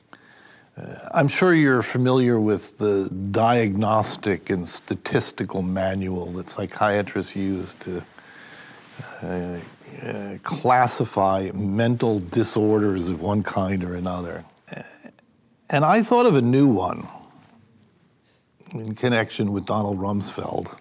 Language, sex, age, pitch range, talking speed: English, male, 50-69, 95-125 Hz, 105 wpm